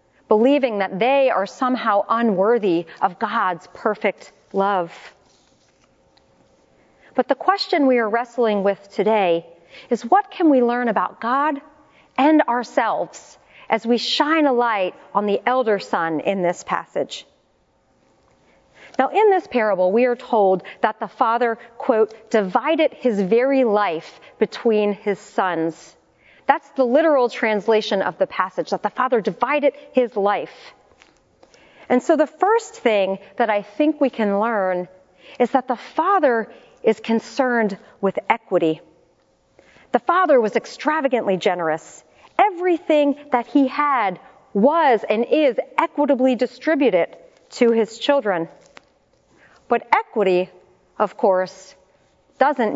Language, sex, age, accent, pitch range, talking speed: English, female, 40-59, American, 195-270 Hz, 125 wpm